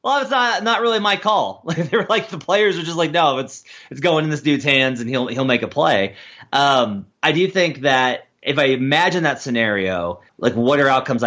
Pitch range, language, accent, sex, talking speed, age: 120-160 Hz, English, American, male, 230 wpm, 30-49